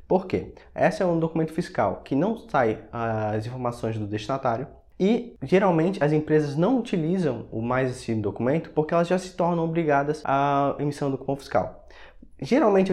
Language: Portuguese